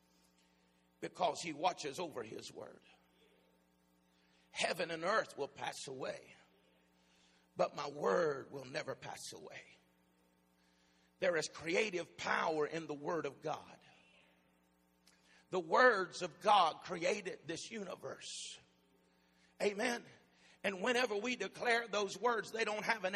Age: 50-69